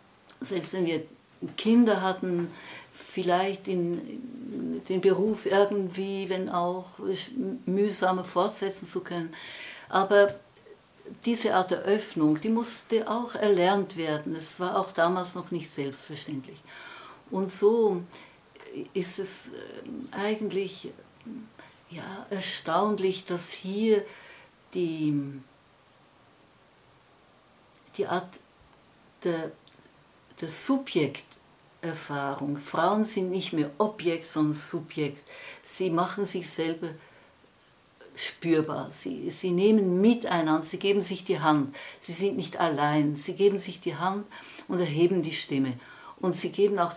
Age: 60-79